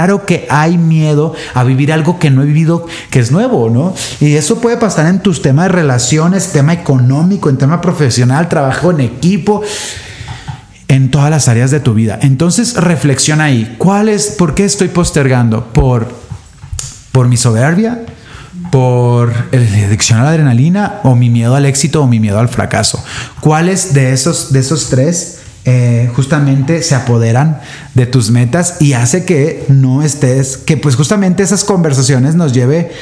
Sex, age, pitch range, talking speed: male, 30-49, 130-170 Hz, 165 wpm